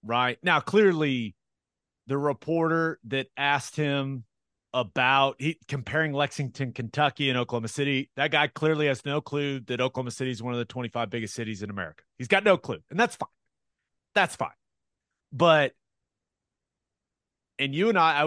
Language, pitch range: English, 125-160 Hz